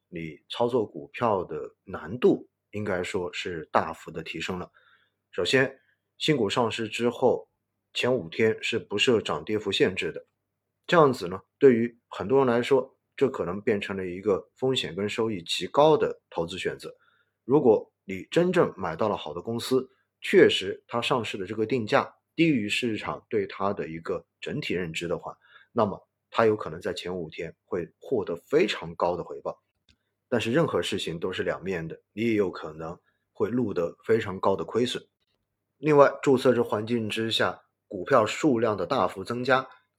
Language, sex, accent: Chinese, male, native